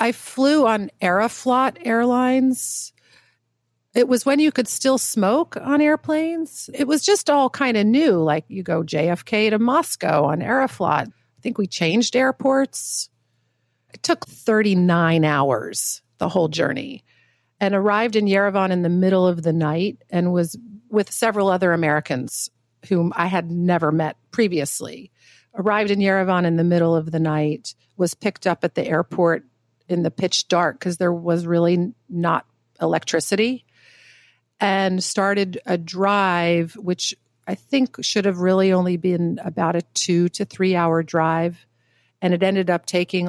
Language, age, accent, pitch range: English, 40-59, American, 160-205 Hz